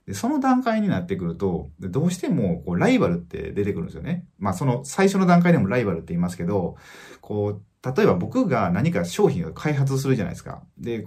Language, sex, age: Japanese, male, 30-49